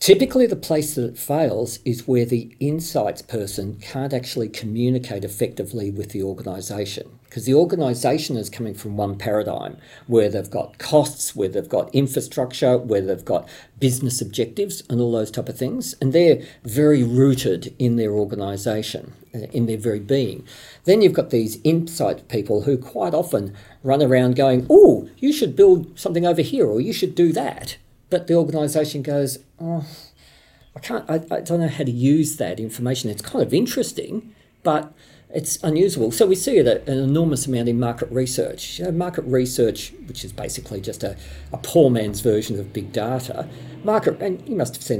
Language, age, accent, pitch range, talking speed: English, 50-69, Australian, 120-165 Hz, 180 wpm